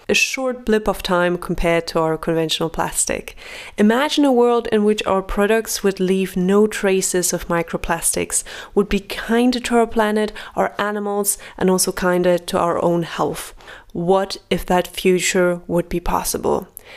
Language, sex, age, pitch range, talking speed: English, female, 20-39, 180-220 Hz, 160 wpm